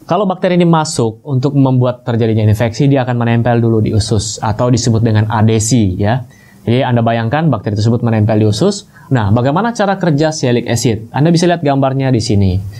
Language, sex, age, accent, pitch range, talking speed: Indonesian, male, 20-39, native, 115-150 Hz, 185 wpm